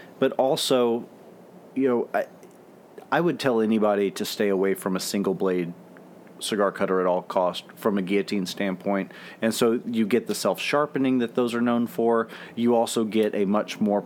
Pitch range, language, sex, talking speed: 100-125 Hz, English, male, 175 wpm